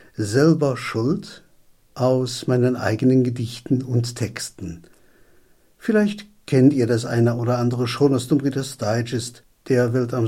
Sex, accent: male, German